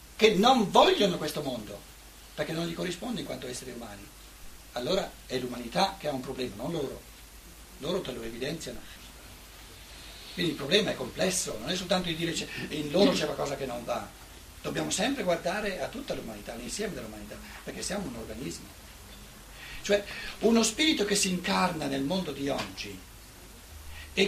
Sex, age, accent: male, 60-79, native